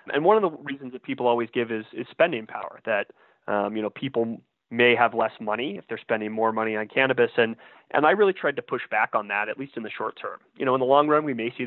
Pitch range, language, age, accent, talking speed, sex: 110-130 Hz, English, 20-39, American, 280 wpm, male